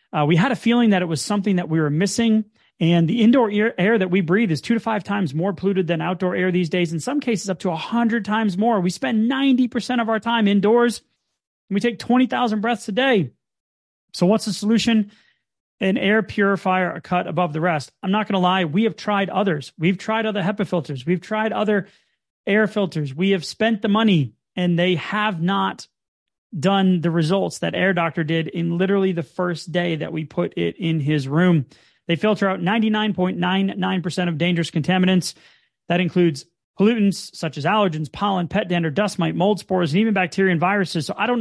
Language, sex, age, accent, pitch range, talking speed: English, male, 30-49, American, 170-215 Hz, 205 wpm